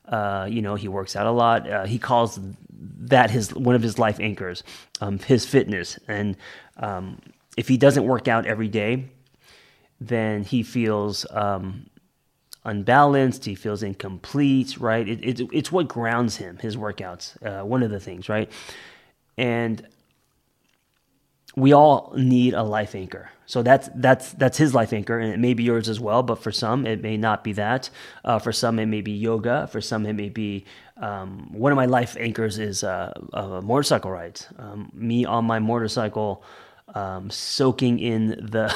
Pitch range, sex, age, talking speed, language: 105-125 Hz, male, 20-39, 175 wpm, English